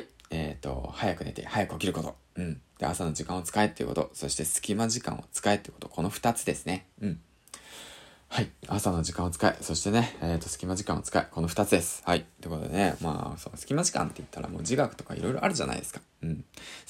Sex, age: male, 20-39